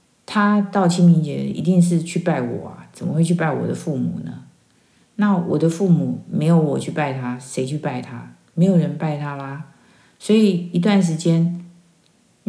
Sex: female